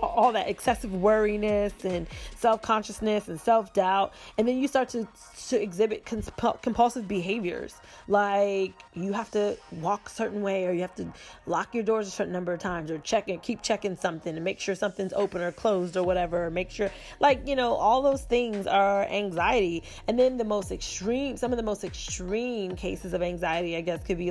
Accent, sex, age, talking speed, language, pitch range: American, female, 20-39, 195 wpm, English, 180-215 Hz